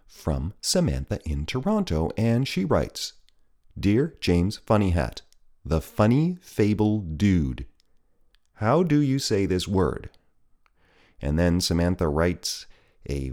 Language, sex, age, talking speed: English, male, 40-59, 115 wpm